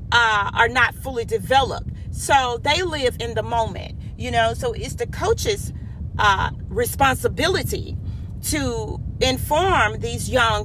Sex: female